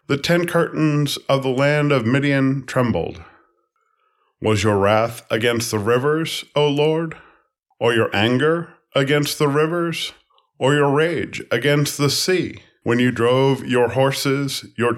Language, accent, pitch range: English, American, 115-160 Hz